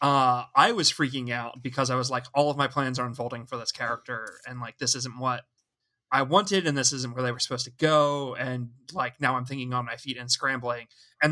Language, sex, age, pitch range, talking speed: English, male, 20-39, 125-145 Hz, 240 wpm